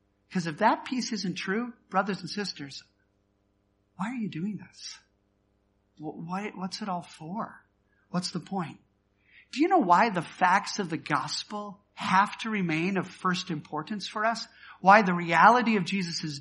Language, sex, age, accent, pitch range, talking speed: English, male, 50-69, American, 165-215 Hz, 155 wpm